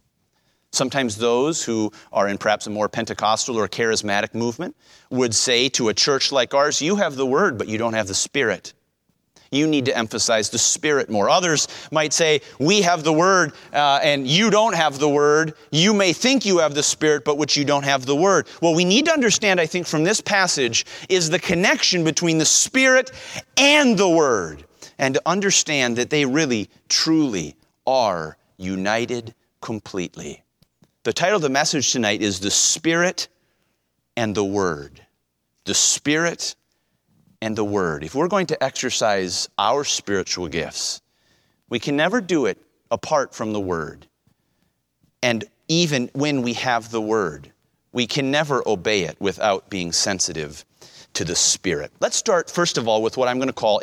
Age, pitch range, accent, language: 30-49, 115-175 Hz, American, English